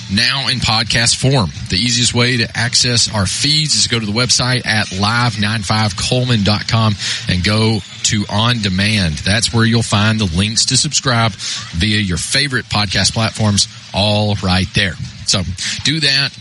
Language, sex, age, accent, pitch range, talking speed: English, male, 30-49, American, 100-125 Hz, 155 wpm